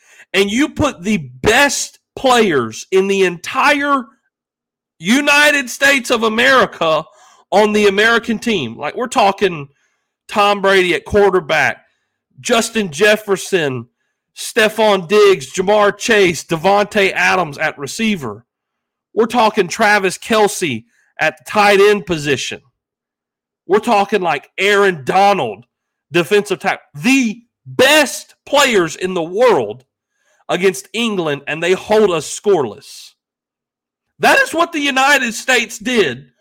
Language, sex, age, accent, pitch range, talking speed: English, male, 40-59, American, 170-245 Hz, 115 wpm